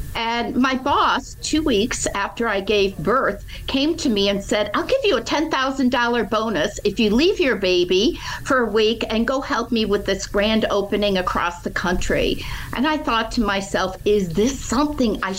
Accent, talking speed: American, 185 wpm